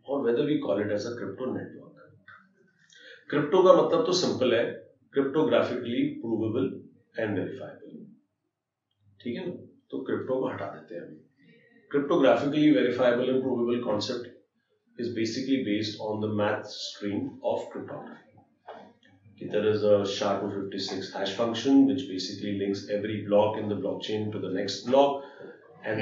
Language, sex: Hindi, male